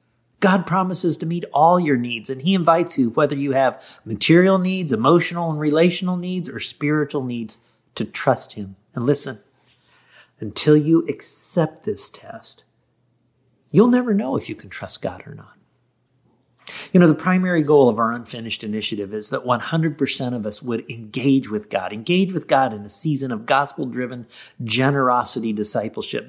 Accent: American